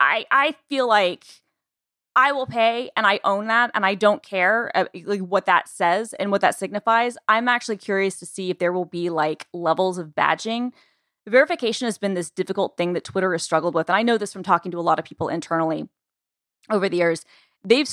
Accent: American